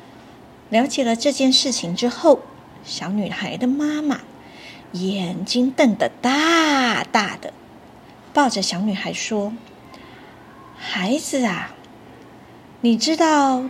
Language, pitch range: Chinese, 205-275 Hz